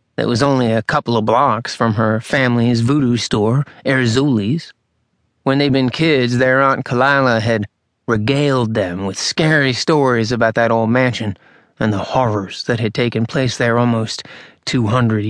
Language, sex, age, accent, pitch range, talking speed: English, male, 30-49, American, 115-145 Hz, 155 wpm